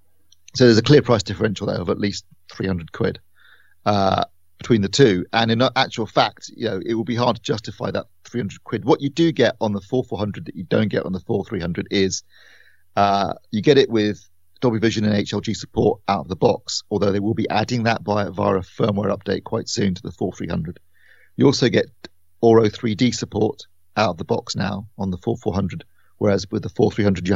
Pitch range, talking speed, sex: 95-115 Hz, 205 wpm, male